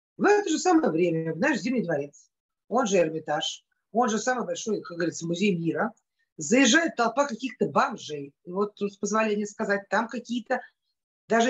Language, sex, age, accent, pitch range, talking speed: Russian, female, 50-69, native, 185-255 Hz, 165 wpm